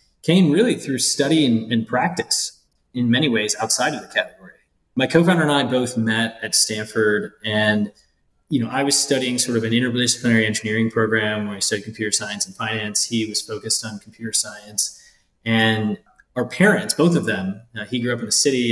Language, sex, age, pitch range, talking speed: English, male, 20-39, 110-125 Hz, 190 wpm